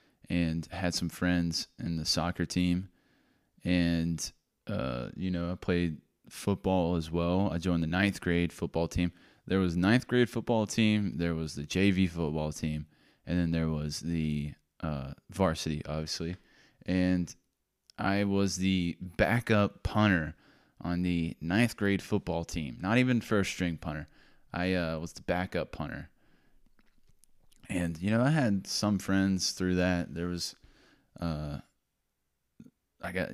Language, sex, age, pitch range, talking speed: English, male, 20-39, 80-95 Hz, 150 wpm